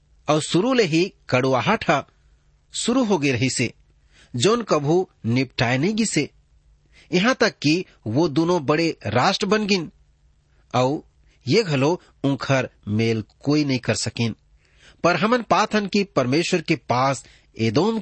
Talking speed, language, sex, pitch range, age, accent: 135 wpm, English, male, 115-175 Hz, 40-59, Indian